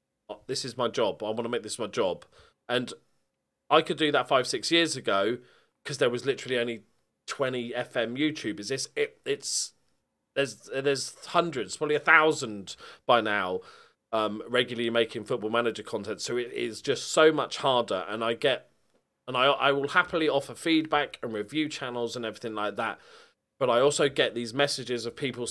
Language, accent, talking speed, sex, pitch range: English, British, 180 wpm, male, 120-180 Hz